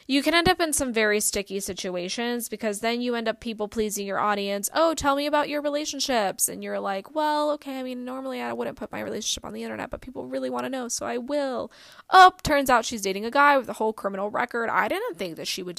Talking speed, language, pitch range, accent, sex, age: 255 wpm, English, 205-270 Hz, American, female, 10-29